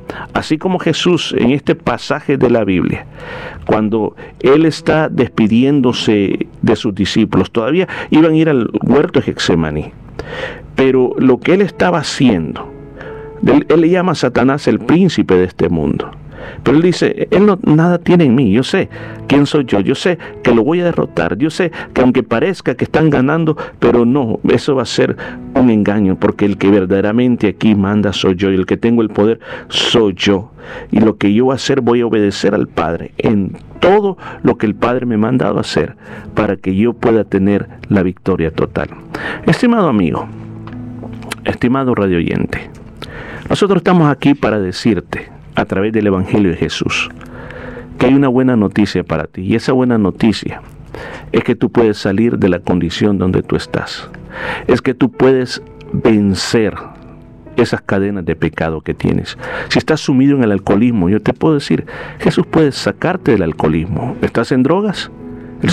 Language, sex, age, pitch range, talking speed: Spanish, male, 50-69, 100-145 Hz, 175 wpm